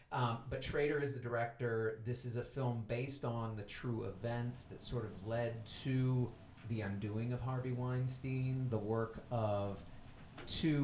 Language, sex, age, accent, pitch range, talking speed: English, male, 30-49, American, 100-125 Hz, 160 wpm